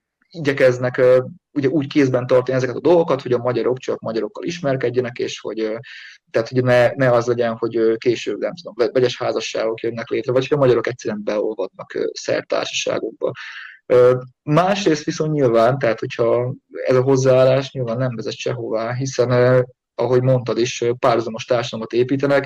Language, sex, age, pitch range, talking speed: Hungarian, male, 20-39, 115-135 Hz, 145 wpm